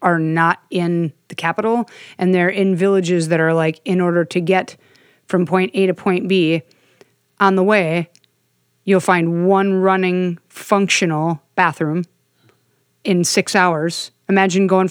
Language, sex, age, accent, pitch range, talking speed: English, female, 30-49, American, 175-205 Hz, 145 wpm